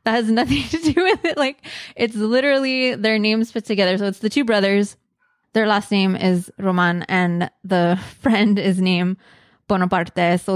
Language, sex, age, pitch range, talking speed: English, female, 20-39, 190-250 Hz, 175 wpm